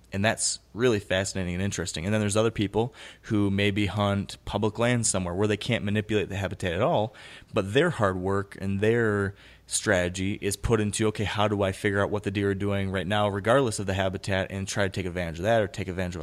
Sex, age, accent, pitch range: male, 20-39, American, 95-110 Hz